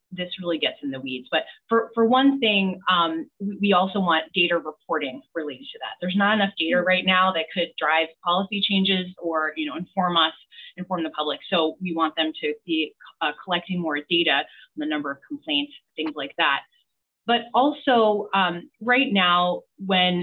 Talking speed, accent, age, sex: 185 wpm, American, 30-49, female